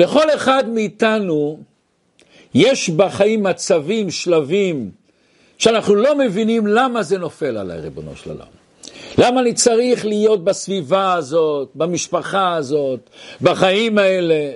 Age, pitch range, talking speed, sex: 60-79, 175-230 Hz, 110 wpm, male